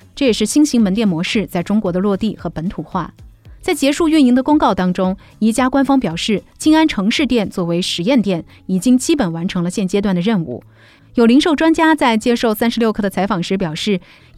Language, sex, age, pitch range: Chinese, female, 30-49, 185-270 Hz